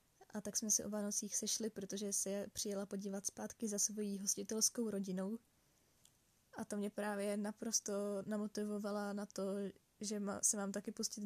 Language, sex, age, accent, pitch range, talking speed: Czech, female, 10-29, native, 200-225 Hz, 155 wpm